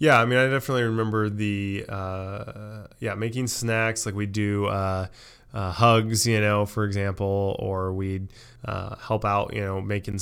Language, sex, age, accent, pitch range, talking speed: English, male, 20-39, American, 100-115 Hz, 170 wpm